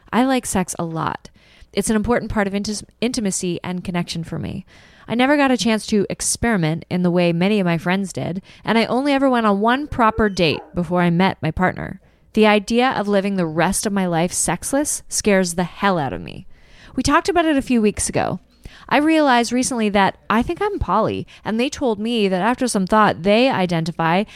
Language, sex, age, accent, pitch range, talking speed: English, female, 20-39, American, 175-235 Hz, 210 wpm